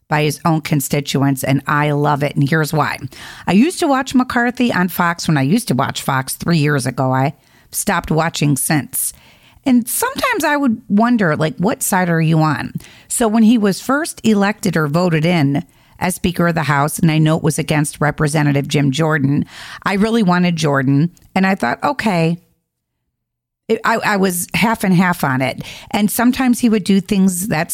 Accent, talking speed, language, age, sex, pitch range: American, 190 wpm, English, 40-59, female, 150-210 Hz